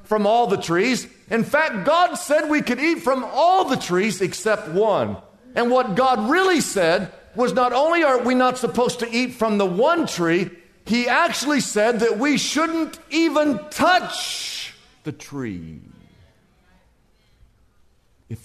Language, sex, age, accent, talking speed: English, male, 50-69, American, 150 wpm